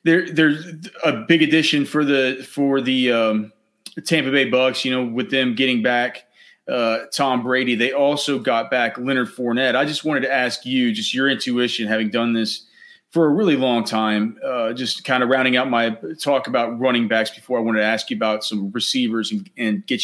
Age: 30-49